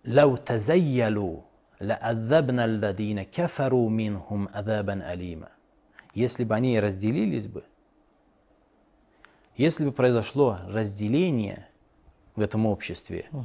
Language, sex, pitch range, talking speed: Russian, male, 105-125 Hz, 55 wpm